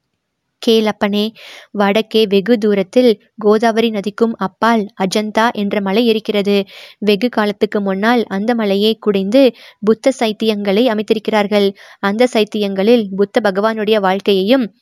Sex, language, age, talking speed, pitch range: female, Tamil, 20-39, 100 wpm, 200-230 Hz